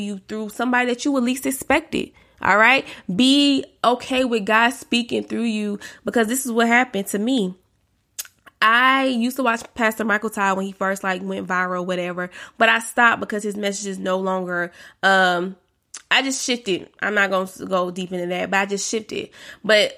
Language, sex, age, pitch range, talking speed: English, female, 20-39, 195-260 Hz, 190 wpm